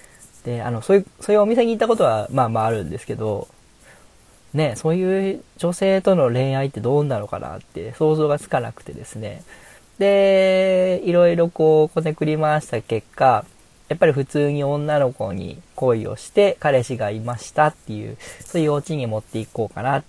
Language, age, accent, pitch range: Japanese, 20-39, native, 120-165 Hz